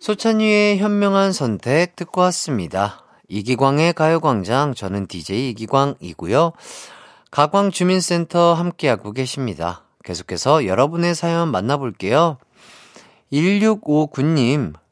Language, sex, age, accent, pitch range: Korean, male, 40-59, native, 125-170 Hz